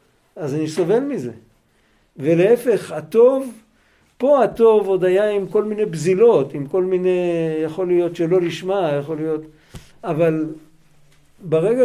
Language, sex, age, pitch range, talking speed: Hebrew, male, 50-69, 160-225 Hz, 125 wpm